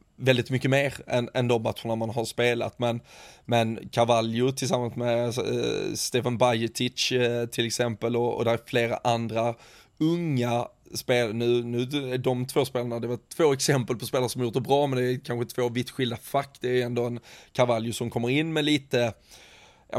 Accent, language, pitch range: native, Swedish, 115-130 Hz